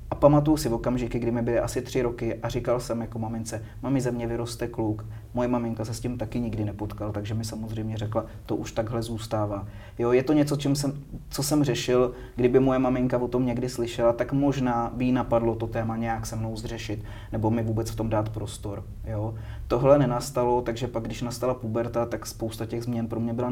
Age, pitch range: 30-49, 110-120 Hz